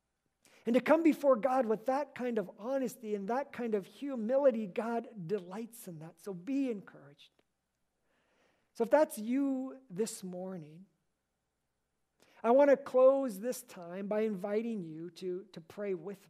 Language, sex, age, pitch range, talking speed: English, male, 50-69, 180-230 Hz, 150 wpm